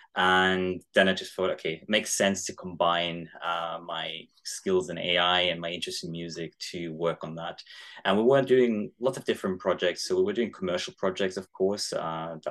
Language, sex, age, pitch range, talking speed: English, male, 20-39, 80-95 Hz, 200 wpm